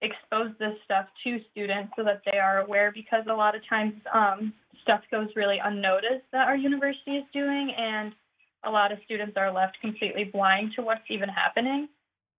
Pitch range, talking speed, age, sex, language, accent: 210-250 Hz, 185 wpm, 20-39, female, English, American